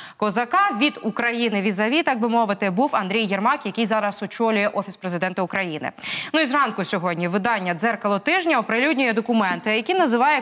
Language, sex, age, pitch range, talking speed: Ukrainian, female, 20-39, 205-265 Hz, 155 wpm